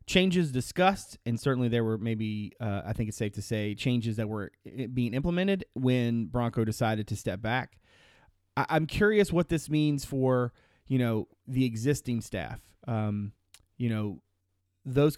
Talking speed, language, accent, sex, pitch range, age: 160 wpm, English, American, male, 110-135 Hz, 30-49